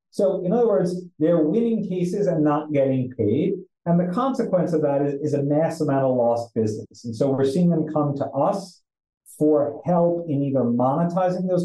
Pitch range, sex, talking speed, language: 125-170 Hz, male, 195 wpm, English